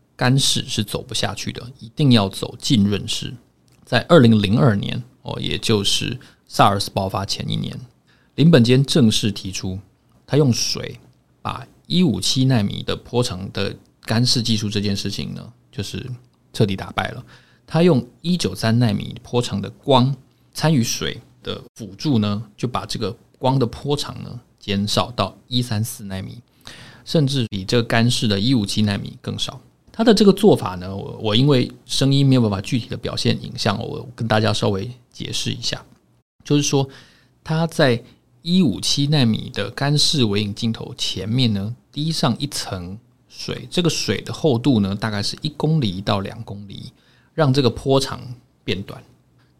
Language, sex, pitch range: Chinese, male, 105-135 Hz